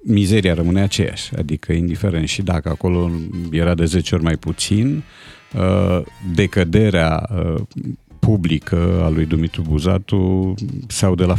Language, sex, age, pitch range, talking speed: Romanian, male, 50-69, 85-110 Hz, 120 wpm